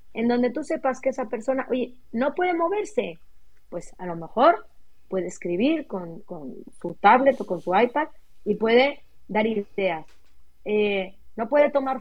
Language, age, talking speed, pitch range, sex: Spanish, 30-49, 165 wpm, 195-255 Hz, female